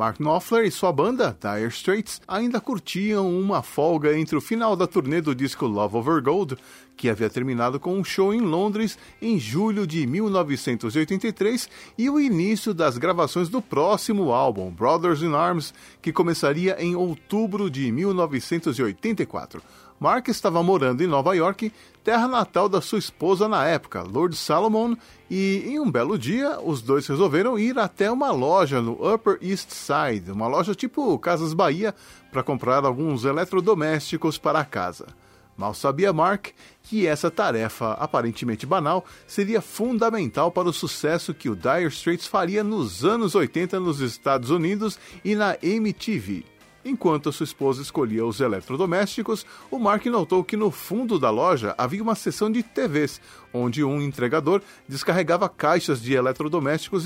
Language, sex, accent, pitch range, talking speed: Portuguese, male, Brazilian, 145-210 Hz, 150 wpm